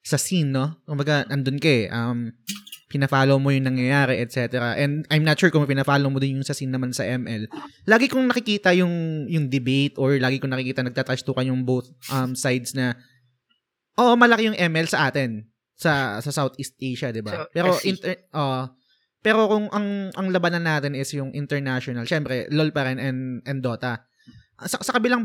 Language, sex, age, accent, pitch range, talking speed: Filipino, male, 20-39, native, 130-180 Hz, 185 wpm